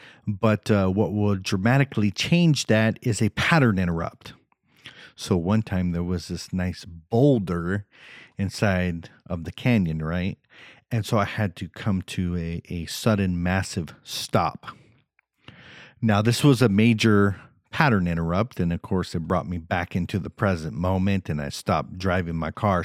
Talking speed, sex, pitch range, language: 160 wpm, male, 90-110 Hz, English